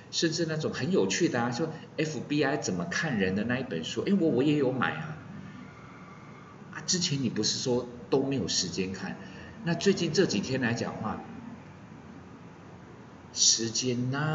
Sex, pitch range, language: male, 105-140 Hz, Chinese